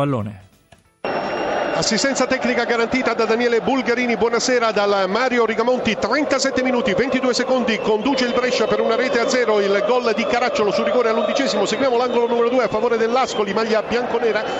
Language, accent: Italian, native